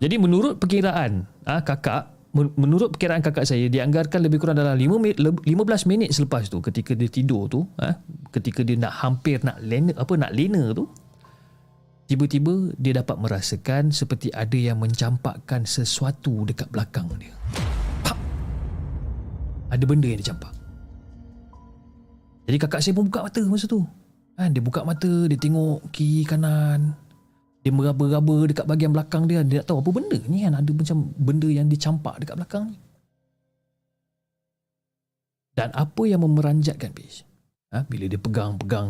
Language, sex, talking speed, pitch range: Malay, male, 150 wpm, 115-155 Hz